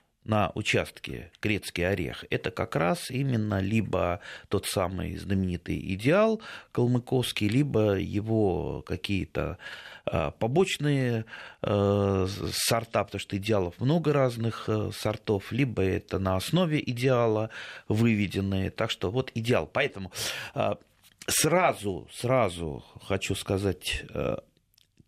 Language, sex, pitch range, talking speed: Russian, male, 95-130 Hz, 95 wpm